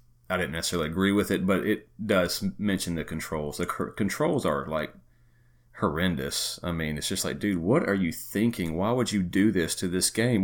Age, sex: 40-59, male